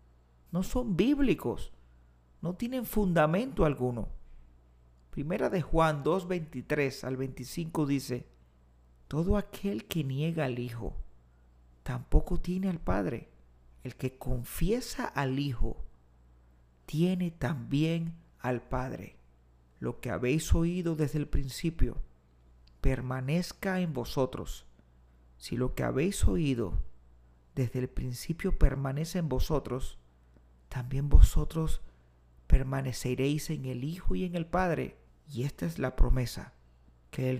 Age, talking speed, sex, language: 40-59, 115 wpm, male, Spanish